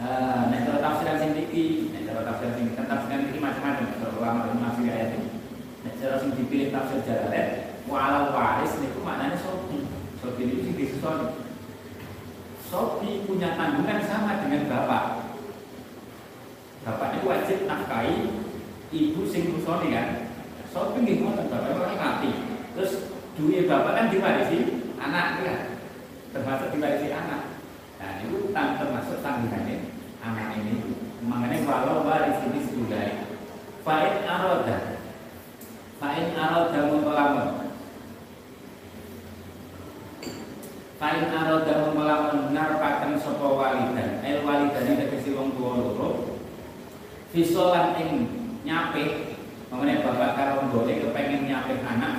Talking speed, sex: 110 wpm, male